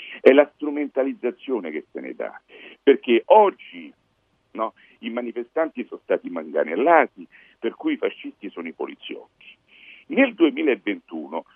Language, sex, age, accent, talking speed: Italian, male, 50-69, native, 125 wpm